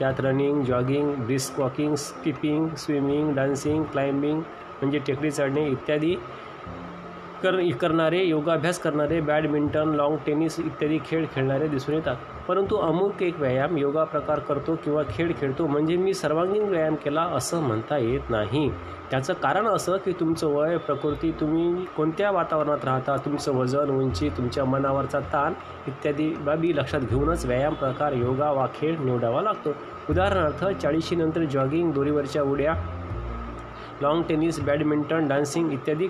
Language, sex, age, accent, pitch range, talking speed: Marathi, male, 30-49, native, 140-165 Hz, 120 wpm